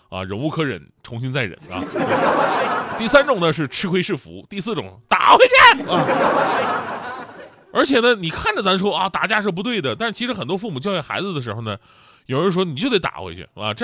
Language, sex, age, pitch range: Chinese, male, 30-49, 130-200 Hz